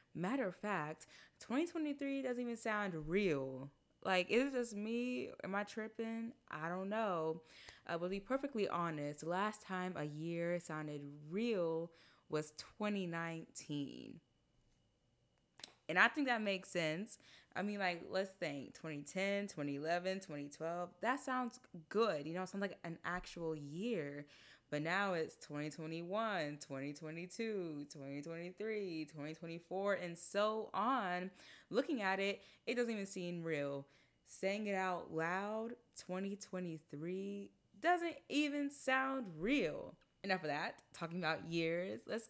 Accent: American